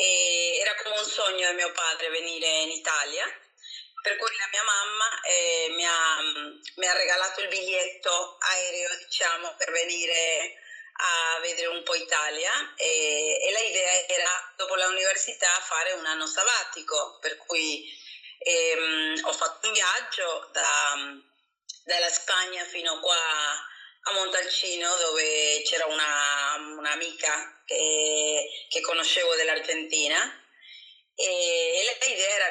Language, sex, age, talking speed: Italian, female, 30-49, 130 wpm